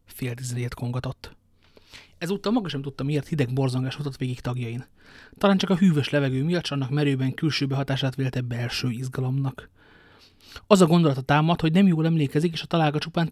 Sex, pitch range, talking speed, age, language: male, 125-155 Hz, 175 wpm, 30-49, Hungarian